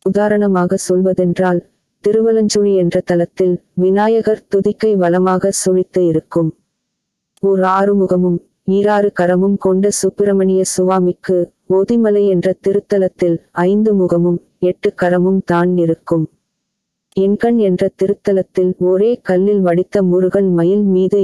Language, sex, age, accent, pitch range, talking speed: Tamil, female, 20-39, native, 180-200 Hz, 100 wpm